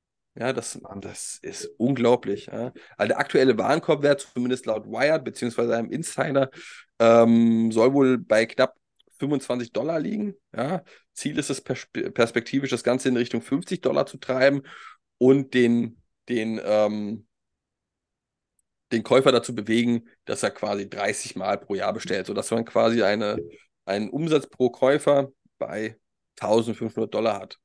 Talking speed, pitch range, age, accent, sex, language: 140 wpm, 115-135 Hz, 20-39, German, male, German